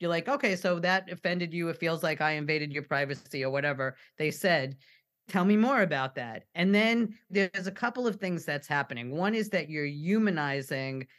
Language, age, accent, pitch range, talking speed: English, 40-59, American, 150-195 Hz, 200 wpm